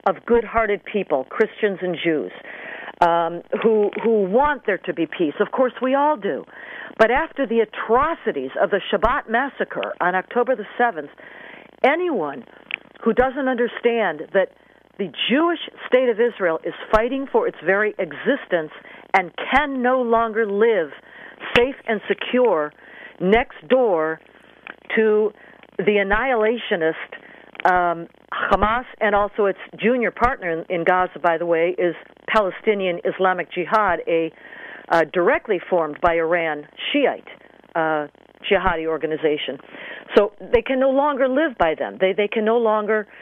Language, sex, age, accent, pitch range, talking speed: English, female, 50-69, American, 180-240 Hz, 140 wpm